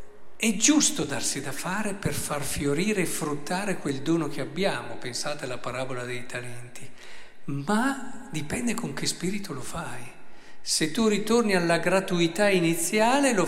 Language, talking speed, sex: Italian, 145 wpm, male